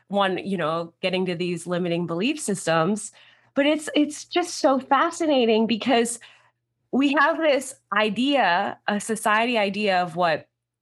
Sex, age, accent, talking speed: female, 20-39, American, 140 wpm